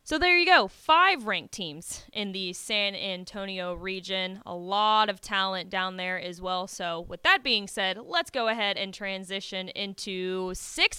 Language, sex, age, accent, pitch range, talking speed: English, female, 20-39, American, 180-225 Hz, 175 wpm